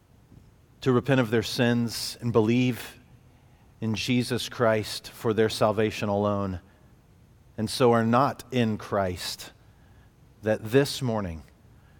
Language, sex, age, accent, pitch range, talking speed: English, male, 40-59, American, 105-125 Hz, 115 wpm